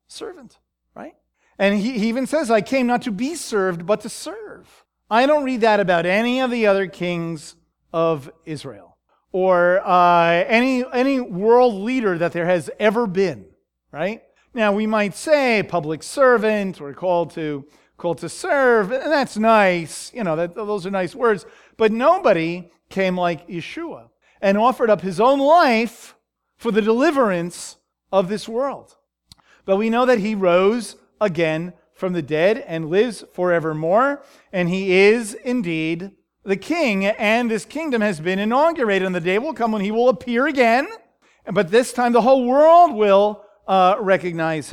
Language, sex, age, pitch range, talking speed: English, male, 40-59, 175-240 Hz, 165 wpm